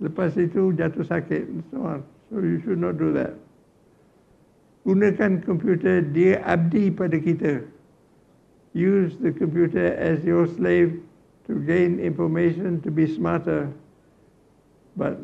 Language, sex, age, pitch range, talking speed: Malay, male, 60-79, 160-185 Hz, 120 wpm